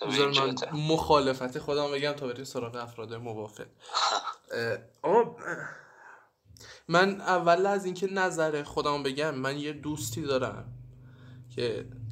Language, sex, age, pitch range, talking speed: Persian, male, 20-39, 130-210 Hz, 105 wpm